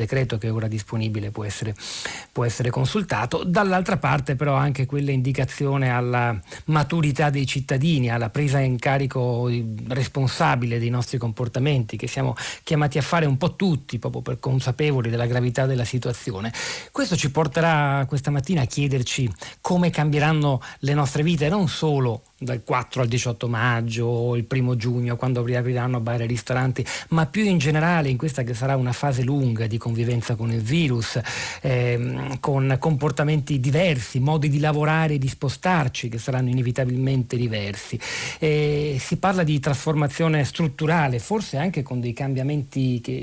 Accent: native